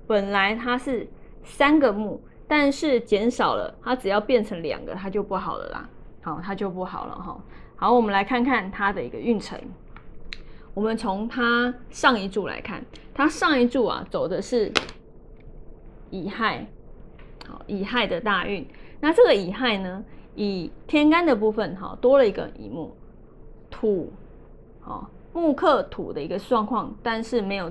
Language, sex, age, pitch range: Chinese, female, 20-39, 200-265 Hz